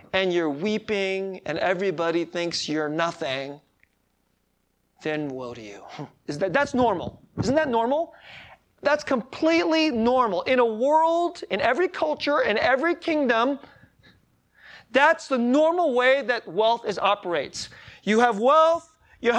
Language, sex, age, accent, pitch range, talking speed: English, male, 40-59, American, 210-300 Hz, 135 wpm